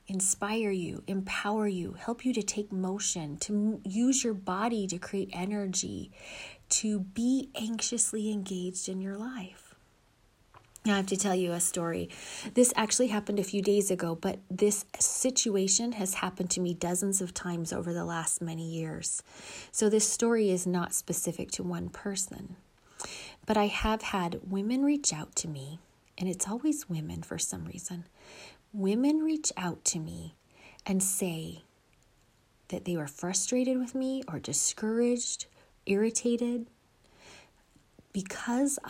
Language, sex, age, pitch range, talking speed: English, female, 30-49, 175-225 Hz, 145 wpm